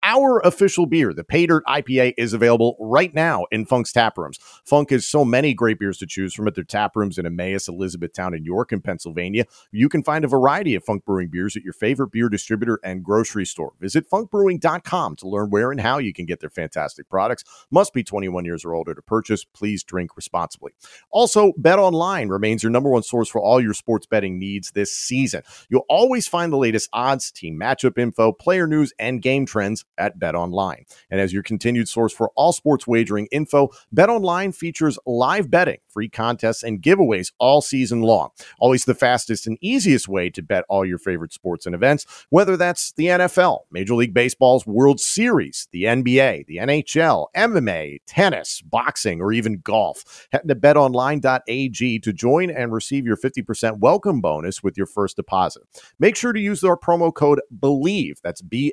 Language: English